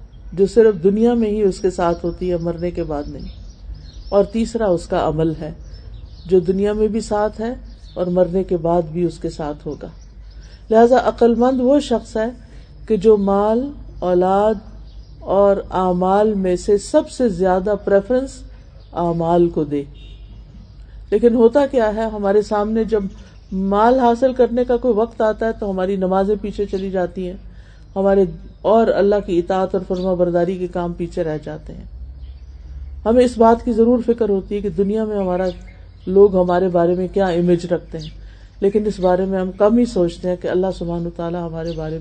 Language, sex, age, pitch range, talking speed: Urdu, female, 50-69, 170-210 Hz, 180 wpm